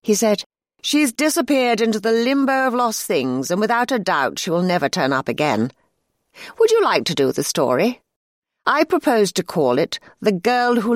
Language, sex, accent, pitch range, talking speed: English, female, British, 165-240 Hz, 190 wpm